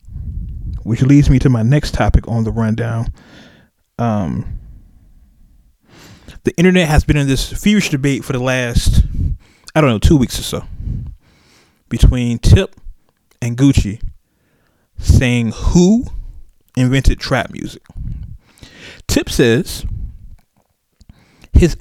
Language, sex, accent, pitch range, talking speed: English, male, American, 95-135 Hz, 115 wpm